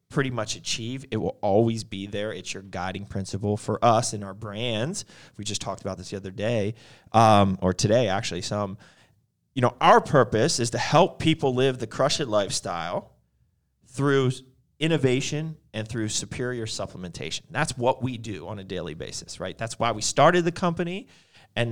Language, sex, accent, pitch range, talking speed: English, male, American, 105-135 Hz, 180 wpm